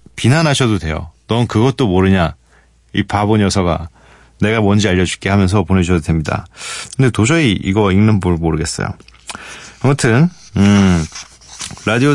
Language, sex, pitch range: Korean, male, 95-125 Hz